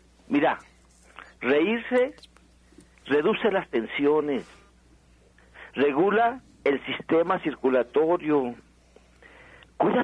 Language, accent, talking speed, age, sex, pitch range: Spanish, Mexican, 60 wpm, 50-69, male, 135-205 Hz